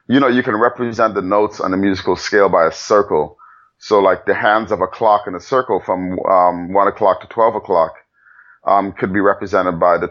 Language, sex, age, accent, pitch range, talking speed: English, male, 30-49, American, 95-115 Hz, 215 wpm